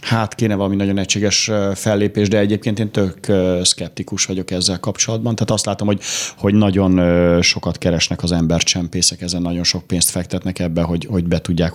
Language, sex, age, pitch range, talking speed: Hungarian, male, 30-49, 90-100 Hz, 175 wpm